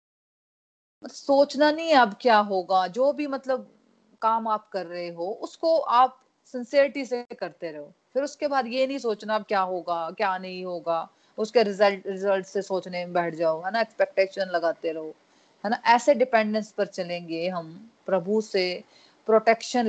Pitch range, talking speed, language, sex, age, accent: 190-235 Hz, 165 wpm, Hindi, female, 30-49, native